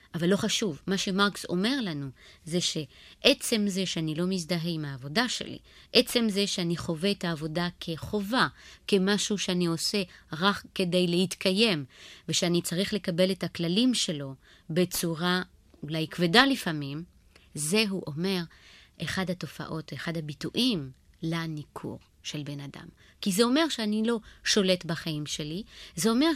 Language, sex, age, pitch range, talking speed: Hebrew, female, 30-49, 160-215 Hz, 130 wpm